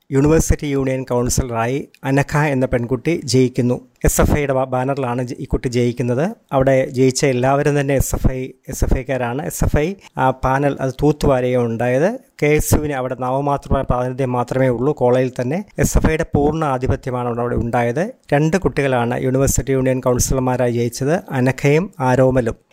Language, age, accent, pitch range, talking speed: Malayalam, 30-49, native, 125-150 Hz, 145 wpm